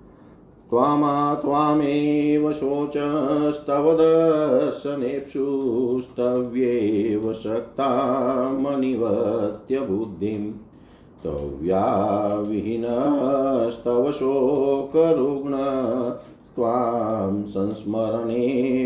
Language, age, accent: Hindi, 50-69, native